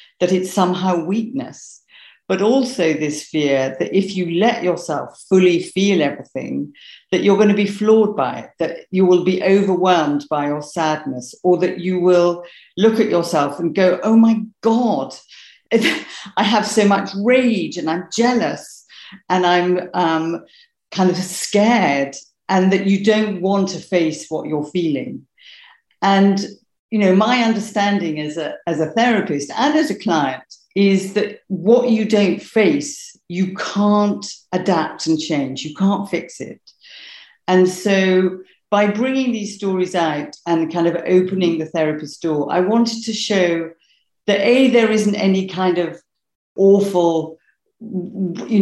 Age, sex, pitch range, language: 50-69, female, 170-210 Hz, English